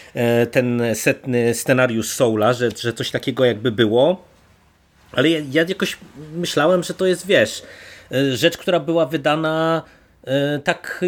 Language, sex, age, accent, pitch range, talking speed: Polish, male, 30-49, native, 120-150 Hz, 130 wpm